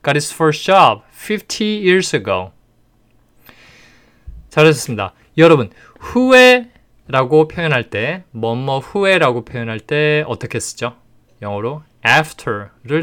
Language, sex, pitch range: Korean, male, 115-155 Hz